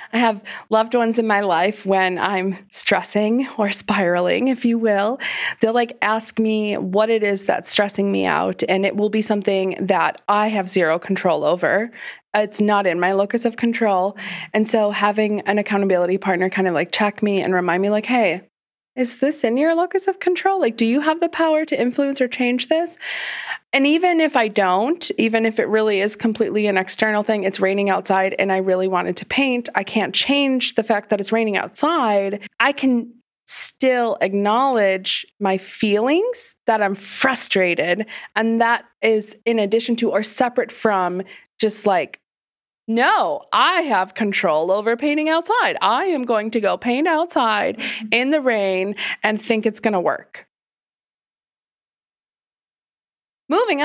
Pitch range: 200-255 Hz